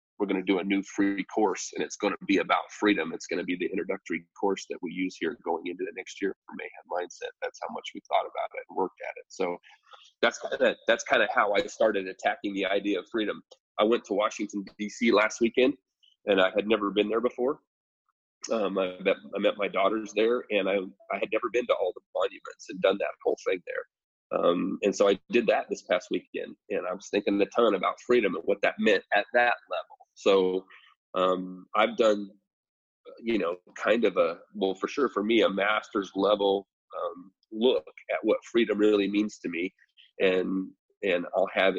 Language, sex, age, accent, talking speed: English, male, 30-49, American, 220 wpm